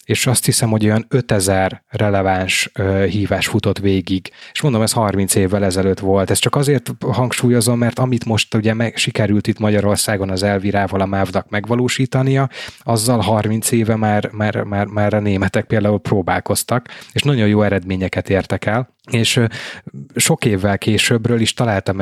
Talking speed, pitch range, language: 160 wpm, 100-115 Hz, Hungarian